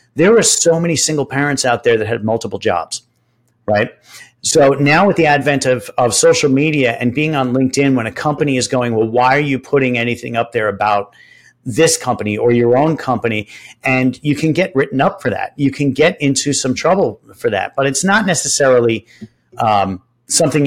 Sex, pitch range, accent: male, 115-140 Hz, American